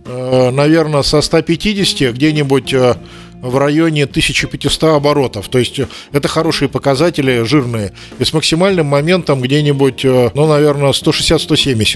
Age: 50-69